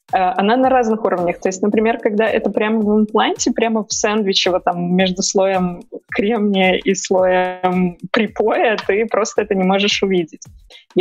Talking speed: 145 wpm